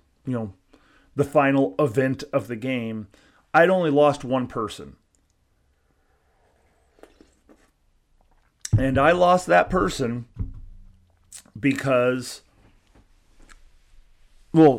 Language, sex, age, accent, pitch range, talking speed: English, male, 30-49, American, 110-150 Hz, 80 wpm